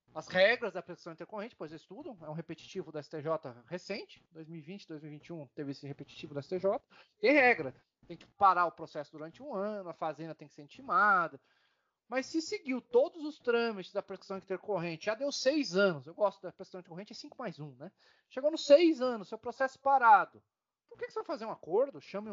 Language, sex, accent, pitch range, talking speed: Portuguese, male, Brazilian, 165-250 Hz, 200 wpm